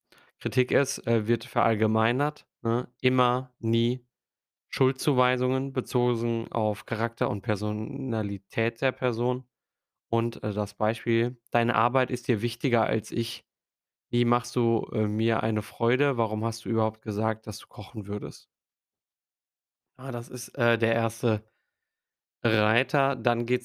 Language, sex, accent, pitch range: German, male, German, 110-125 Hz